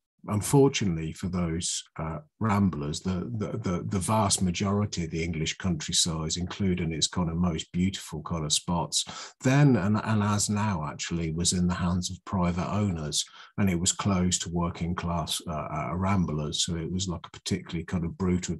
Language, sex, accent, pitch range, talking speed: English, male, British, 85-100 Hz, 175 wpm